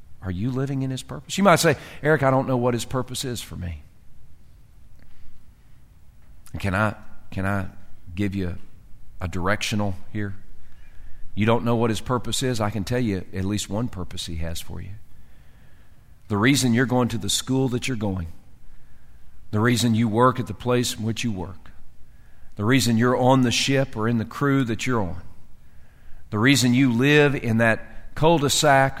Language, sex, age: English, male, 40-59